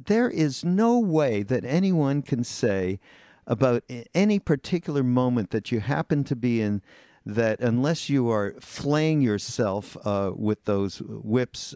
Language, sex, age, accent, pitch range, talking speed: English, male, 50-69, American, 105-150 Hz, 145 wpm